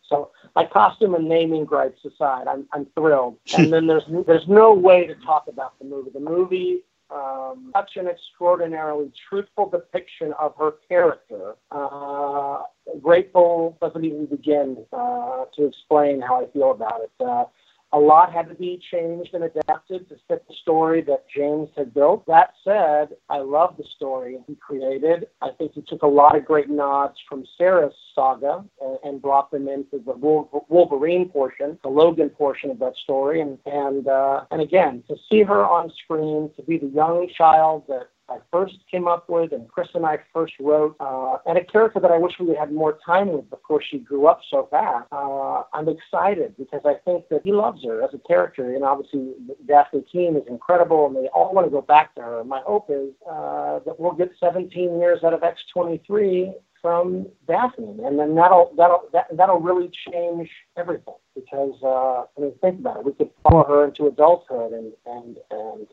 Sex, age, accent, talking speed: male, 50-69, American, 190 wpm